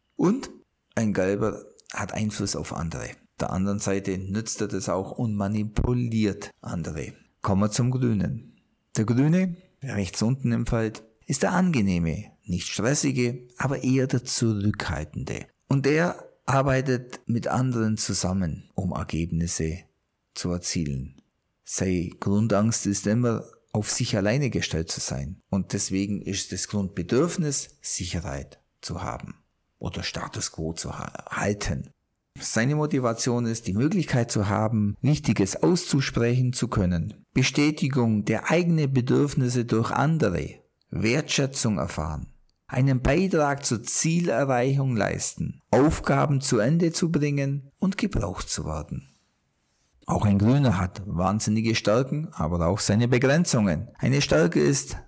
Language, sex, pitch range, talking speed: German, male, 95-130 Hz, 125 wpm